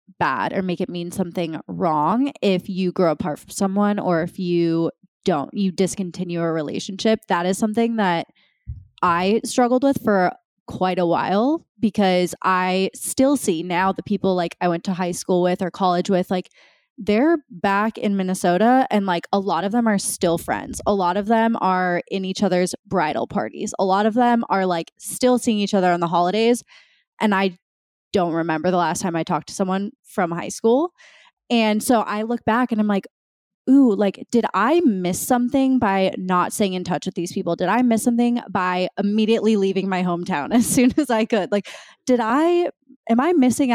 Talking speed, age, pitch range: 195 wpm, 20-39, 180-235 Hz